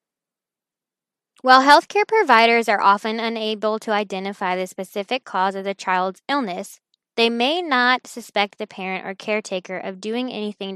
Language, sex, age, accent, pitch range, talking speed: English, female, 10-29, American, 195-240 Hz, 145 wpm